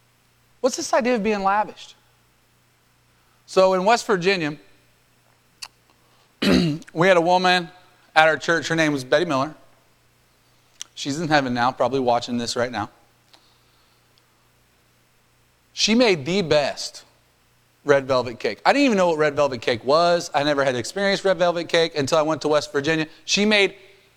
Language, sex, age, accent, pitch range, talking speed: English, male, 30-49, American, 155-215 Hz, 155 wpm